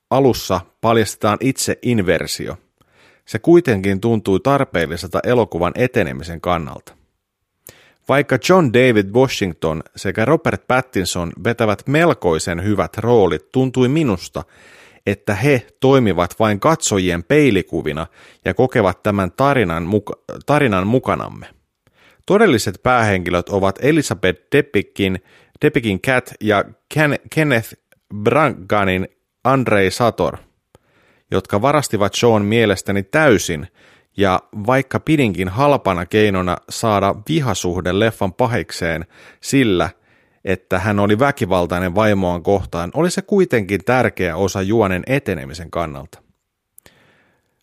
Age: 30-49